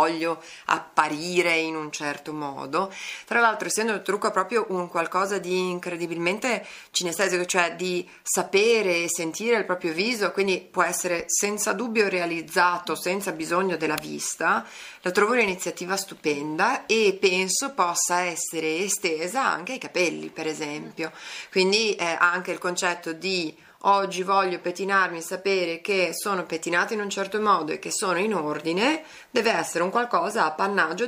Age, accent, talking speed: 30-49, native, 145 wpm